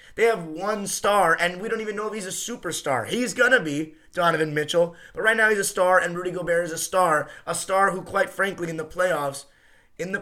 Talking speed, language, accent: 240 wpm, English, American